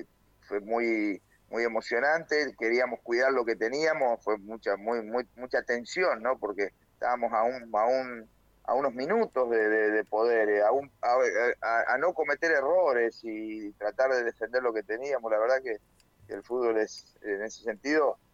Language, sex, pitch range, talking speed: Spanish, male, 105-135 Hz, 175 wpm